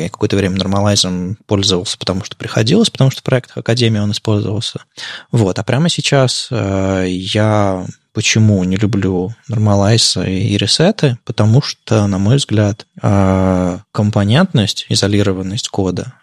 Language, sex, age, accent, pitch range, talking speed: Russian, male, 20-39, native, 100-125 Hz, 125 wpm